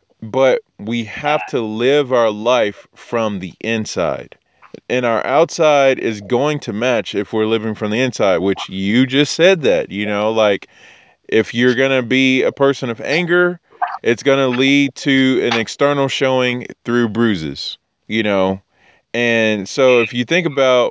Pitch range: 110-135 Hz